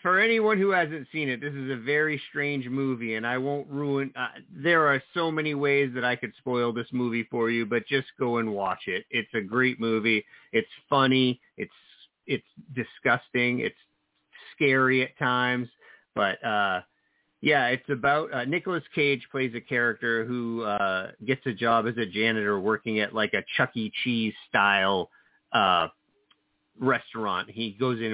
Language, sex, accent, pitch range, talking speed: English, male, American, 110-140 Hz, 175 wpm